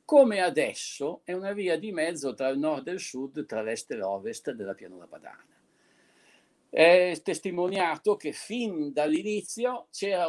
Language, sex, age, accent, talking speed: Italian, male, 50-69, native, 150 wpm